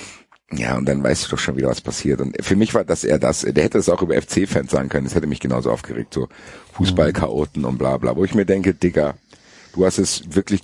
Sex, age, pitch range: male, 50-69, 80-100 Hz